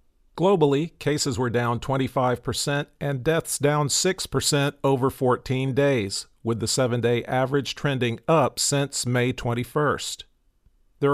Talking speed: 120 wpm